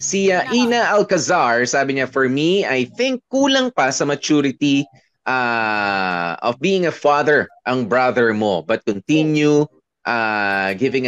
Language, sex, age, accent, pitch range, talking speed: Filipino, male, 20-39, native, 110-150 Hz, 140 wpm